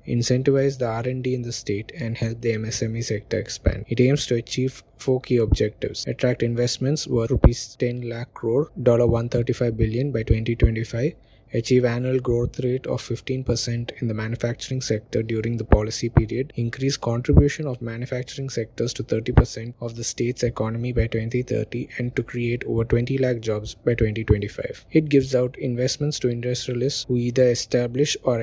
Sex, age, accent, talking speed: male, 20-39, Indian, 165 wpm